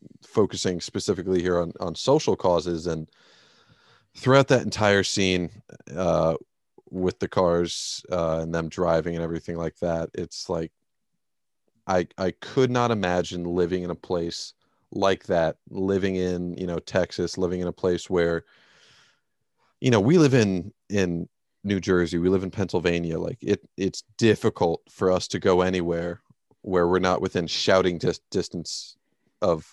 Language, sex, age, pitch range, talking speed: English, male, 30-49, 85-100 Hz, 155 wpm